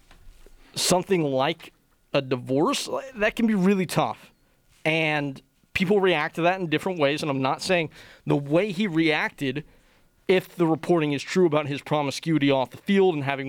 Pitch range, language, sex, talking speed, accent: 140-180 Hz, English, male, 170 wpm, American